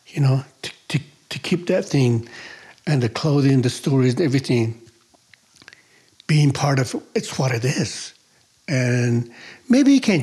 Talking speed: 145 wpm